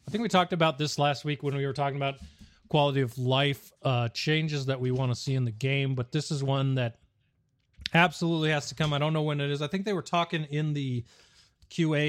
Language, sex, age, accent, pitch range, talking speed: English, male, 30-49, American, 130-155 Hz, 245 wpm